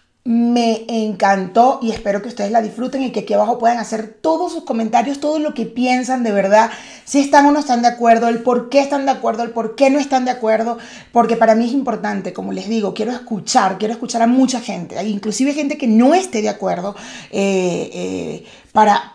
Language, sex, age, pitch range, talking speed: Spanish, female, 30-49, 200-260 Hz, 210 wpm